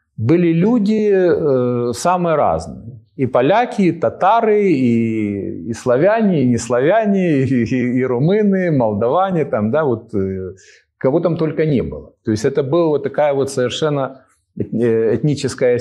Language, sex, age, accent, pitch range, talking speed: Ukrainian, male, 40-59, native, 110-160 Hz, 135 wpm